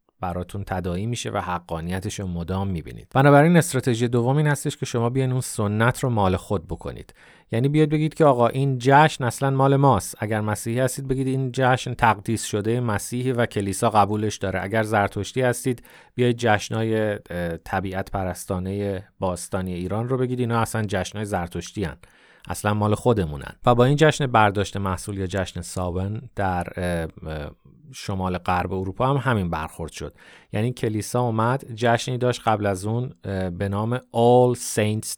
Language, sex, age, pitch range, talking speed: Persian, male, 30-49, 95-125 Hz, 160 wpm